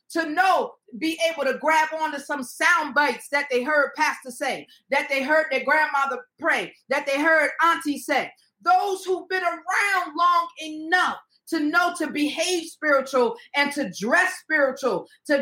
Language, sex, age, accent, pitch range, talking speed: English, female, 40-59, American, 280-345 Hz, 165 wpm